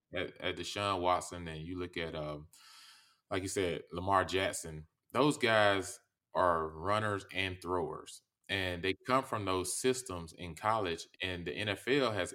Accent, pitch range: American, 90-125 Hz